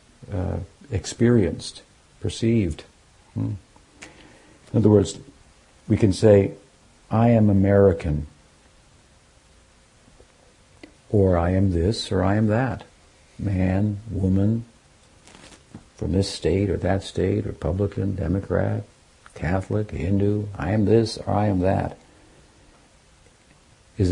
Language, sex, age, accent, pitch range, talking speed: English, male, 60-79, American, 85-105 Hz, 100 wpm